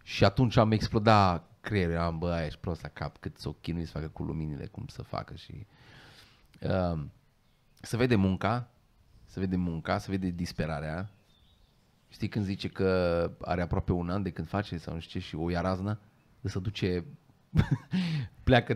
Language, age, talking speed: Romanian, 30-49, 175 wpm